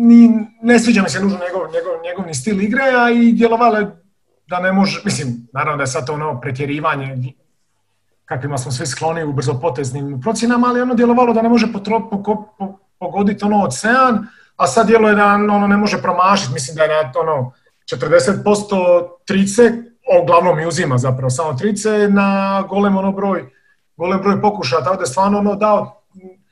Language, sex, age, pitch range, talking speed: Croatian, male, 40-59, 160-215 Hz, 175 wpm